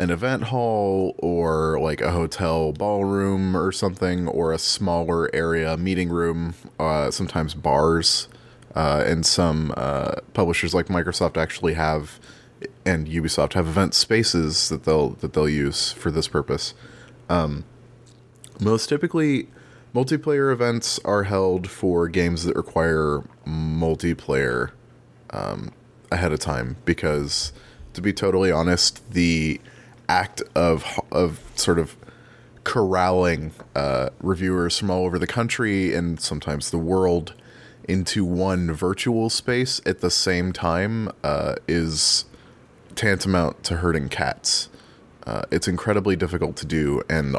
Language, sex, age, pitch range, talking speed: English, male, 30-49, 80-100 Hz, 130 wpm